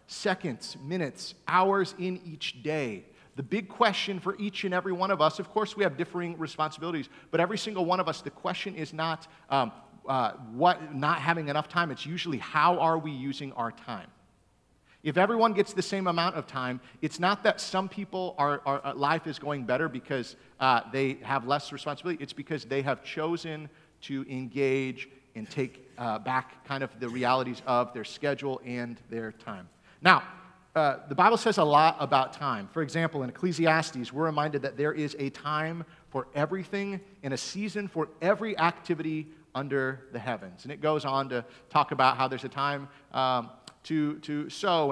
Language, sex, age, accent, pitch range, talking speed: English, male, 40-59, American, 135-180 Hz, 190 wpm